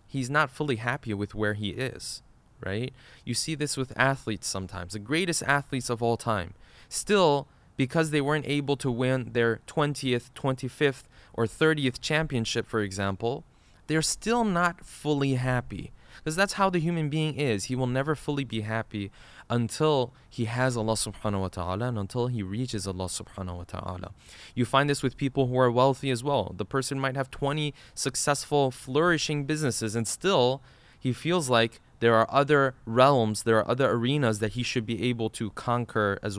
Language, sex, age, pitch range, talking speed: English, male, 20-39, 110-140 Hz, 180 wpm